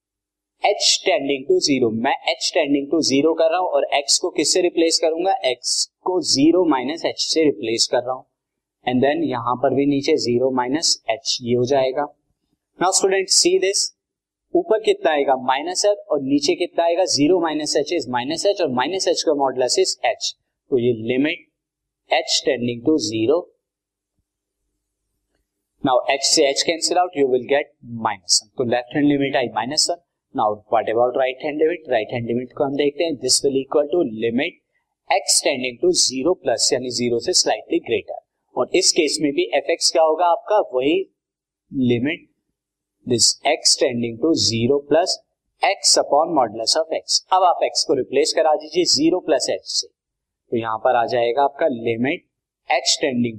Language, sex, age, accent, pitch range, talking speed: Hindi, male, 20-39, native, 125-175 Hz, 130 wpm